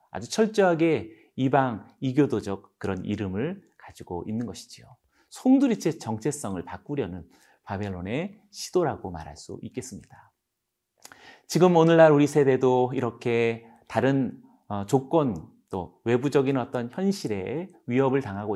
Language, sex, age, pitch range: Korean, male, 40-59, 110-155 Hz